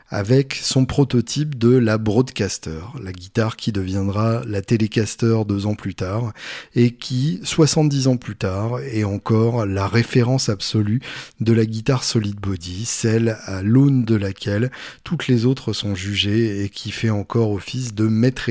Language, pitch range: French, 105-130 Hz